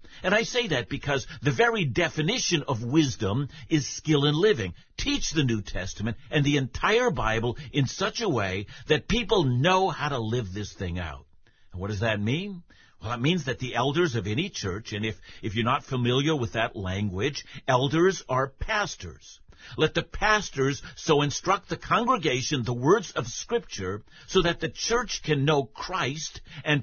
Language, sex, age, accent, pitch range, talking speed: English, male, 60-79, American, 110-155 Hz, 180 wpm